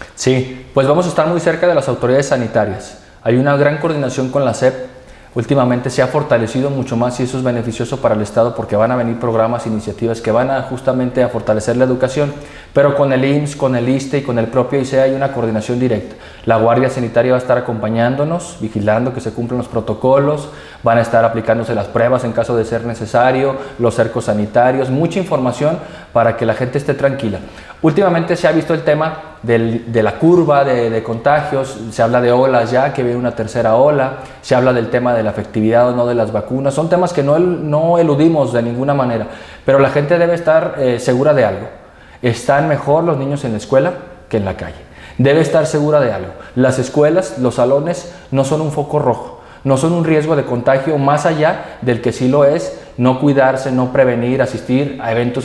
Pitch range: 120-150 Hz